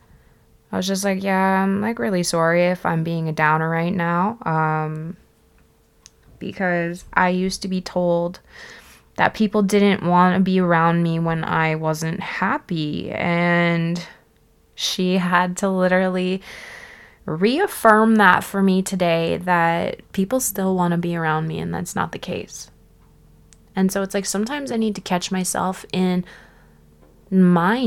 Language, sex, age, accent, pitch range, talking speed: English, female, 20-39, American, 160-195 Hz, 150 wpm